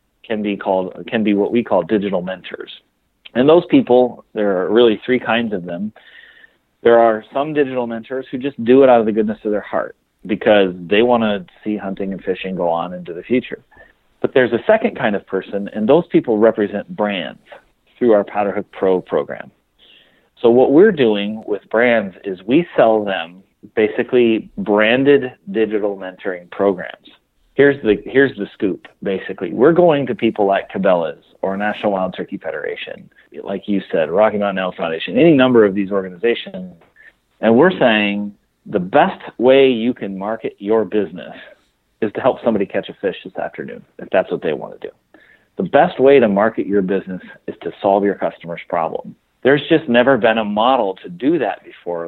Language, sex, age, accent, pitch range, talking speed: English, male, 40-59, American, 100-125 Hz, 185 wpm